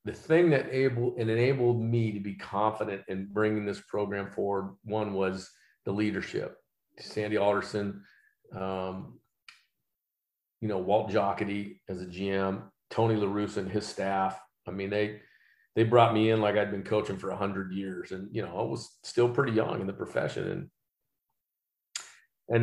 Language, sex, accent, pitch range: English, male, American, 100-115 Hz